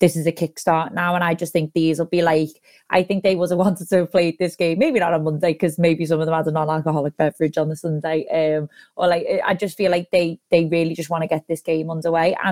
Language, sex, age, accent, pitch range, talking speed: English, female, 20-39, British, 160-180 Hz, 275 wpm